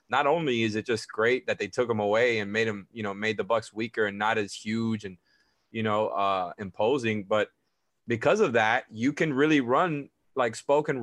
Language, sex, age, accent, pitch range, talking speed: English, male, 20-39, American, 105-120 Hz, 210 wpm